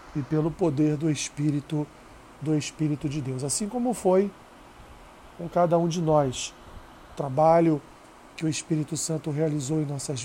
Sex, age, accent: male, 40-59, Brazilian